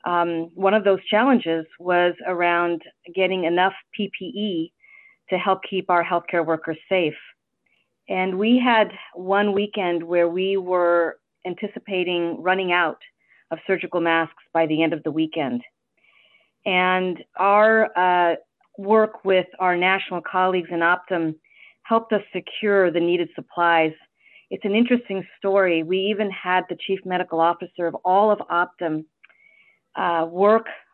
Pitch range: 170-200 Hz